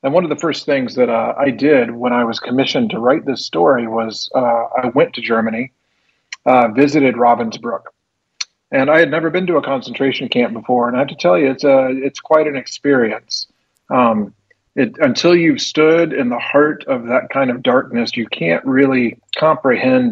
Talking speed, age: 190 wpm, 40-59